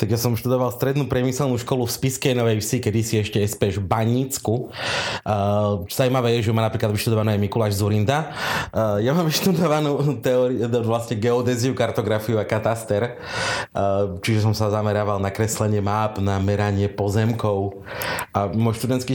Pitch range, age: 100-120 Hz, 30-49